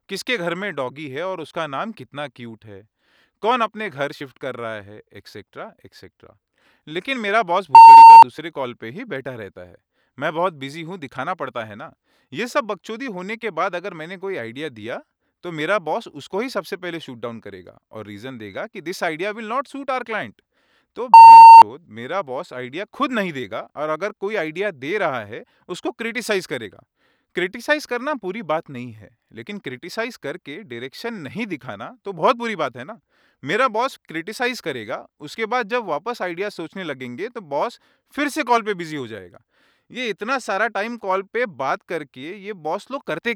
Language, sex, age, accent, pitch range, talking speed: Hindi, male, 30-49, native, 140-230 Hz, 190 wpm